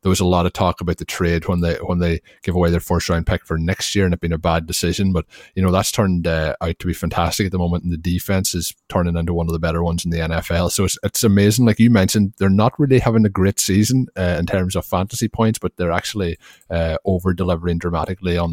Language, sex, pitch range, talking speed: English, male, 85-100 Hz, 270 wpm